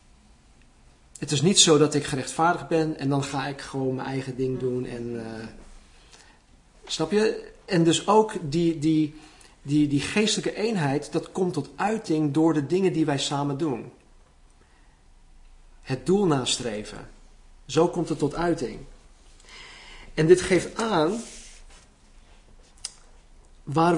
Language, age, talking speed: Dutch, 40-59, 135 wpm